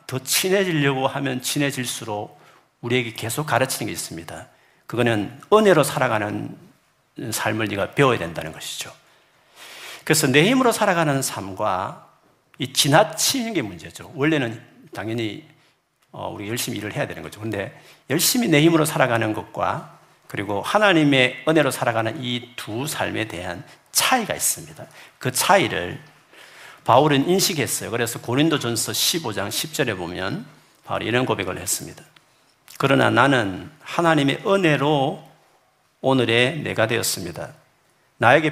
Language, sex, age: Korean, male, 50-69